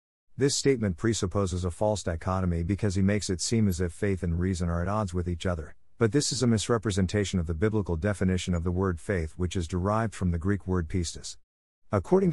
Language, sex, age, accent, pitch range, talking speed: English, male, 50-69, American, 85-110 Hz, 215 wpm